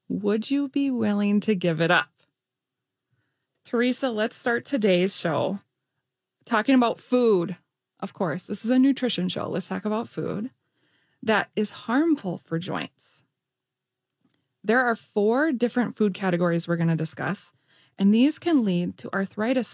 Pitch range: 180-230 Hz